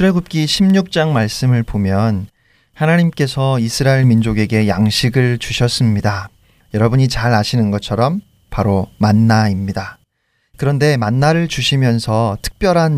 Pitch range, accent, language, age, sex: 105-135 Hz, native, Korean, 40-59, male